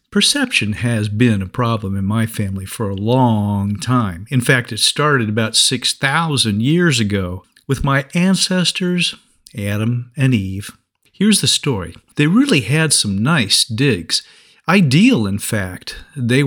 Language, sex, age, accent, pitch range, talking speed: English, male, 50-69, American, 110-155 Hz, 140 wpm